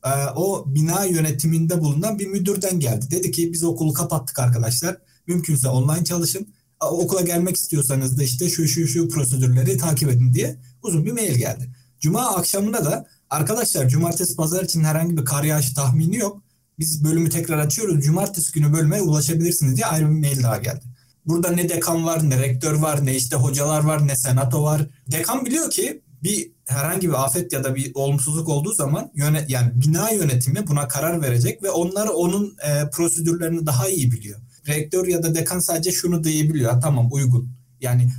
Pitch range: 135-170 Hz